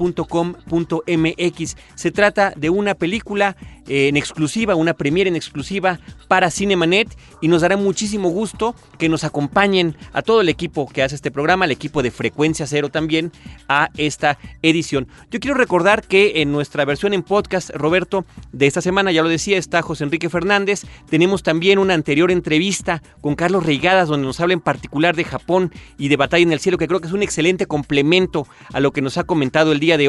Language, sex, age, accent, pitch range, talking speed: Spanish, male, 40-59, Mexican, 150-190 Hz, 195 wpm